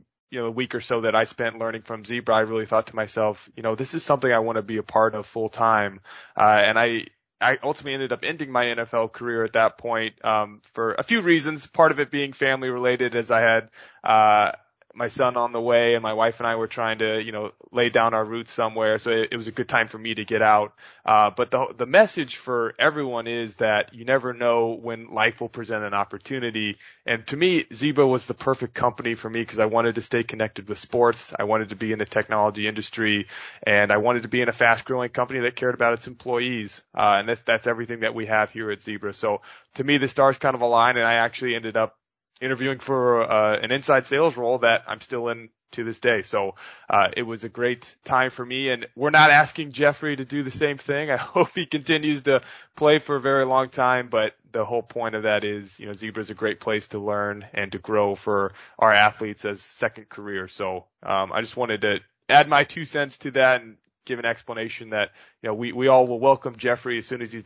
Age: 20-39